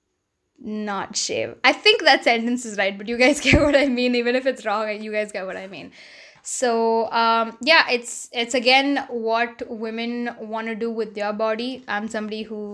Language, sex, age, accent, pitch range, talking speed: English, female, 10-29, Indian, 215-250 Hz, 195 wpm